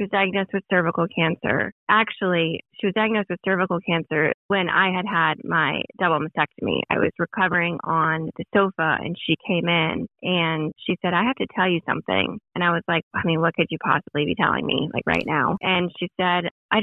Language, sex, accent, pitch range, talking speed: English, female, American, 170-205 Hz, 205 wpm